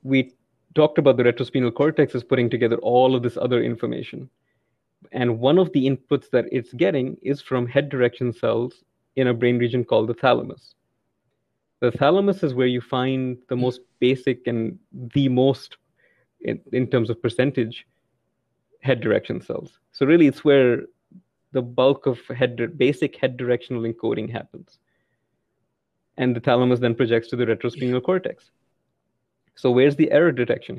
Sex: male